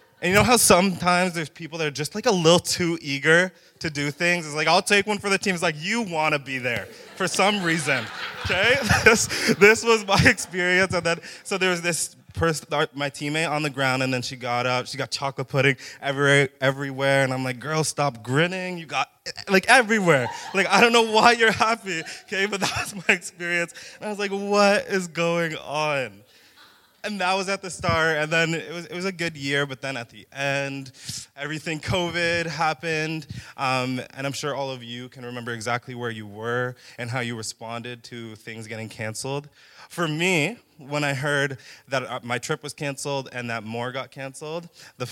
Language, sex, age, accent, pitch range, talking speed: English, male, 20-39, American, 130-175 Hz, 205 wpm